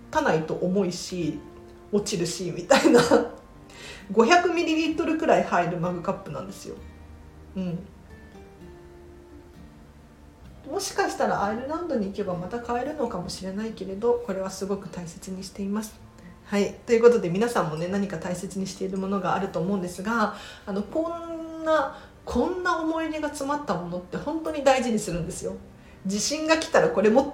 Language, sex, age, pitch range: Japanese, female, 40-59, 180-280 Hz